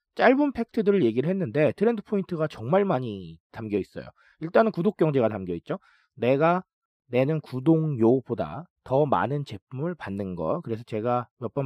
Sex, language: male, Korean